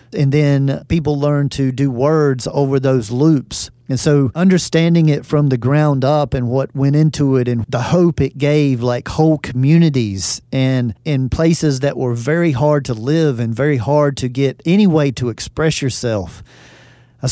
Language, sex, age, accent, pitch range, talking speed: English, male, 40-59, American, 130-150 Hz, 175 wpm